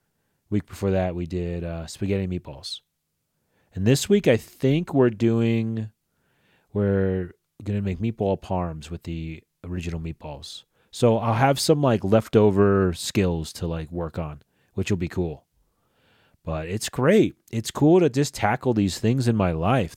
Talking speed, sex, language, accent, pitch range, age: 160 wpm, male, English, American, 90-120 Hz, 30-49